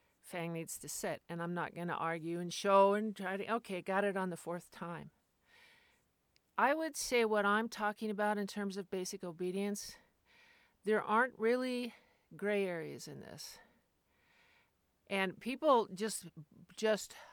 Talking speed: 155 wpm